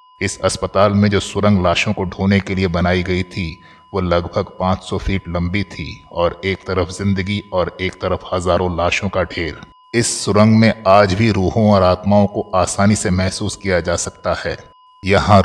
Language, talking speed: Hindi, 185 wpm